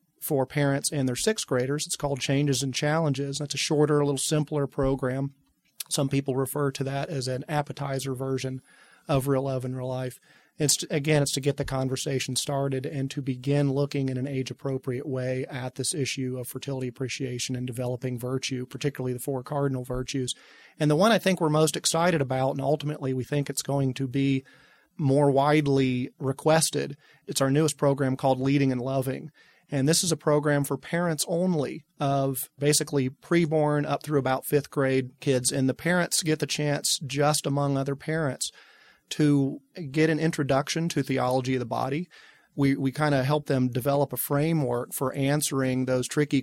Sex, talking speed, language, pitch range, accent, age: male, 180 wpm, English, 130-150 Hz, American, 40-59